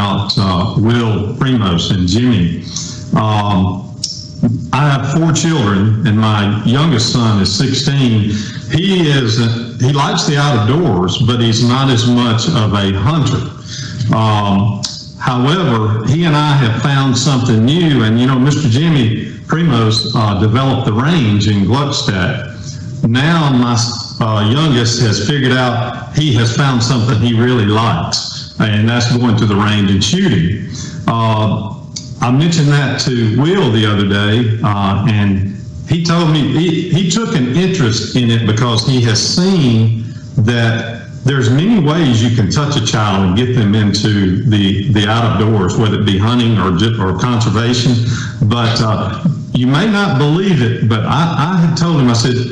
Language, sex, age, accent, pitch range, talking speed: English, male, 50-69, American, 110-140 Hz, 155 wpm